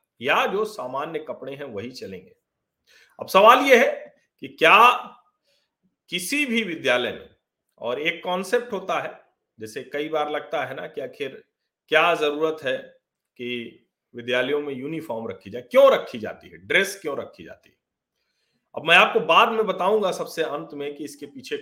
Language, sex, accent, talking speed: Hindi, male, native, 165 wpm